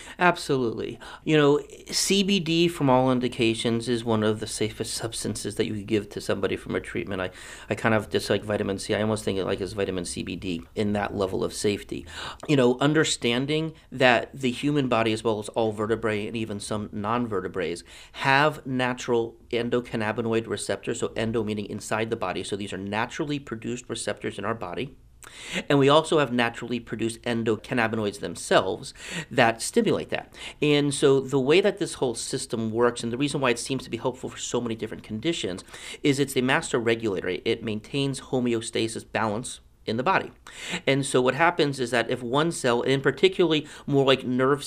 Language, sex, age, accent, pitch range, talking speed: English, male, 40-59, American, 110-135 Hz, 185 wpm